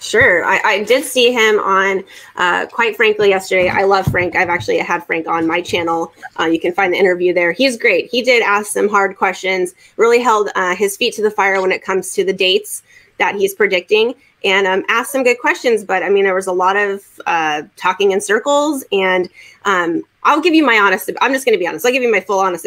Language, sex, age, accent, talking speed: English, female, 20-39, American, 240 wpm